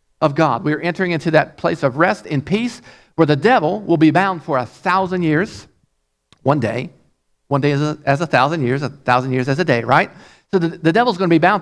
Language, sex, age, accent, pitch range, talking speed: English, male, 50-69, American, 145-185 Hz, 245 wpm